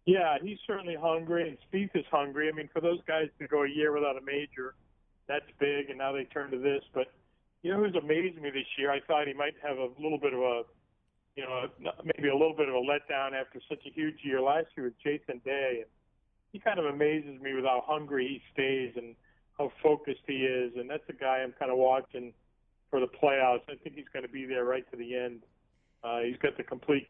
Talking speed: 235 wpm